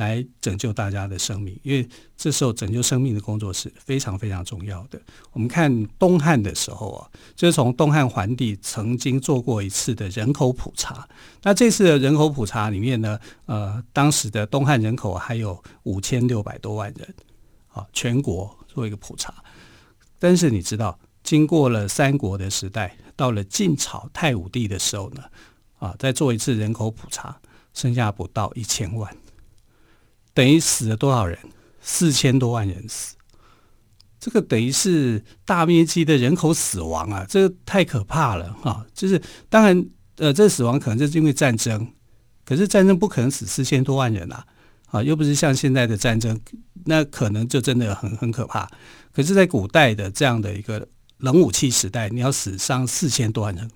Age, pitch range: 50-69, 105-140 Hz